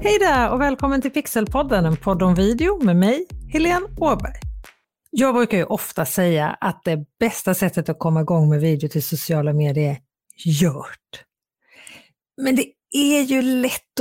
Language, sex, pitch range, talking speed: Swedish, female, 175-235 Hz, 165 wpm